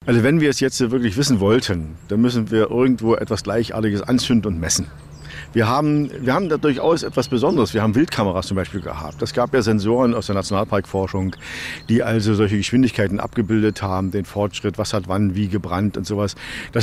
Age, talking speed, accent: 50-69, 195 wpm, German